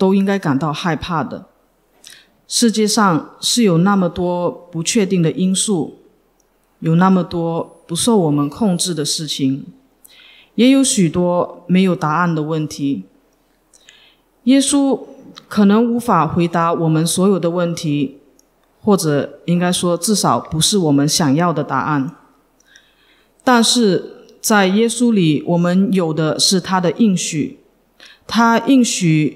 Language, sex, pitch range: English, female, 155-205 Hz